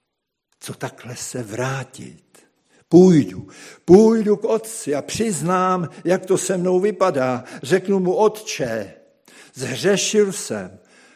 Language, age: Czech, 60-79